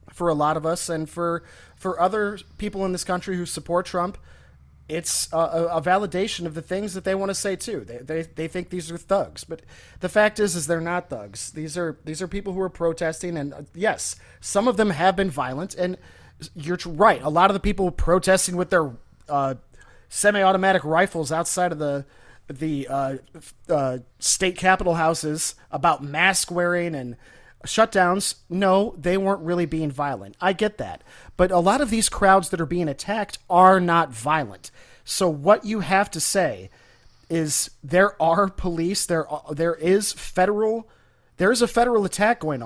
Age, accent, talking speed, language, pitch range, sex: 30-49, American, 185 wpm, English, 155-195 Hz, male